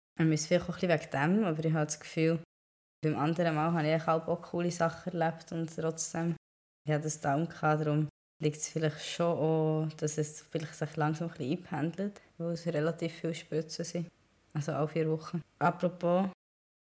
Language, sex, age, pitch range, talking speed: German, female, 20-39, 150-170 Hz, 180 wpm